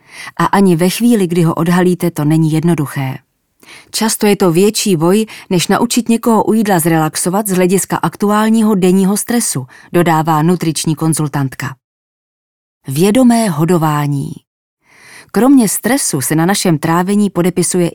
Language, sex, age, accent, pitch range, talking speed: English, female, 30-49, Czech, 160-205 Hz, 125 wpm